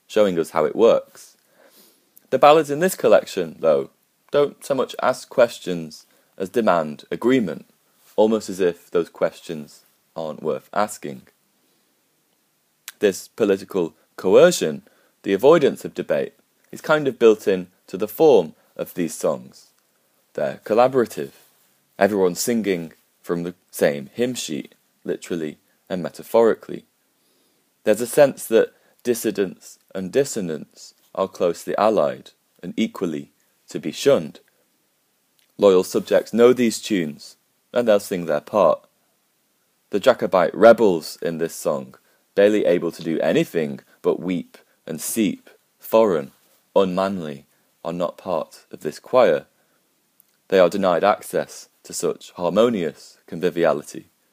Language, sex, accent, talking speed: English, male, British, 125 wpm